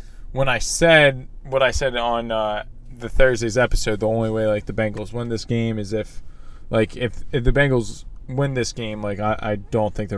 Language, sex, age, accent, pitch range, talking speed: English, male, 10-29, American, 100-135 Hz, 210 wpm